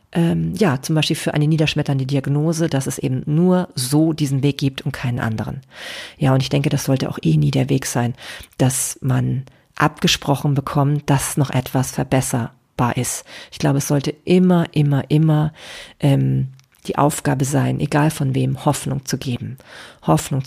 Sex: female